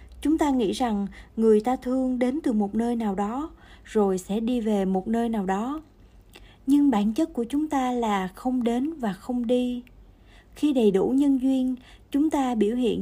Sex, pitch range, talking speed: female, 205-265 Hz, 195 wpm